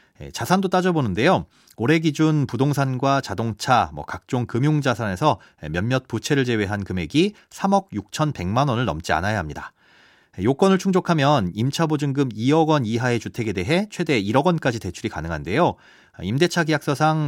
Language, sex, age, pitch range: Korean, male, 30-49, 110-160 Hz